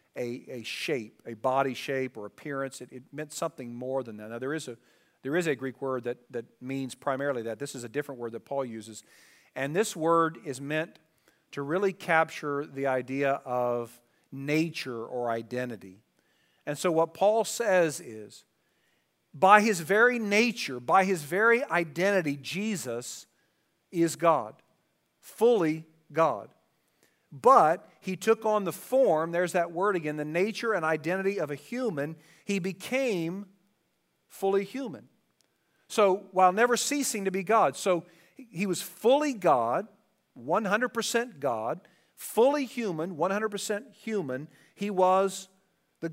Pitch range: 130-195 Hz